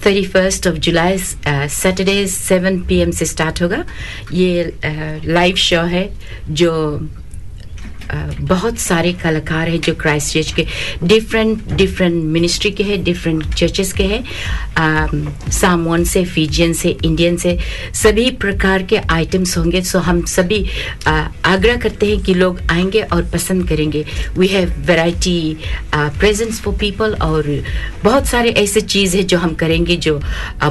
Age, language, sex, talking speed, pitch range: 50-69, Hindi, female, 150 wpm, 155-195 Hz